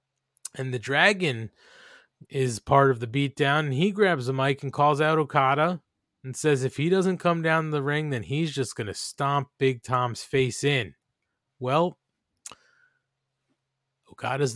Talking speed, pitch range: 155 wpm, 125-155 Hz